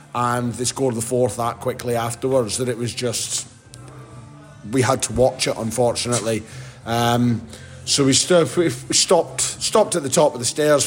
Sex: male